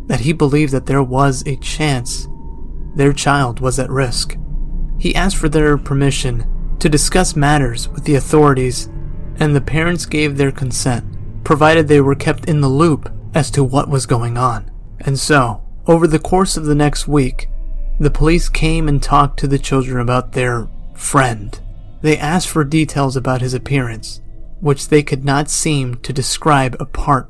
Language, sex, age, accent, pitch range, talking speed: English, male, 30-49, American, 120-155 Hz, 170 wpm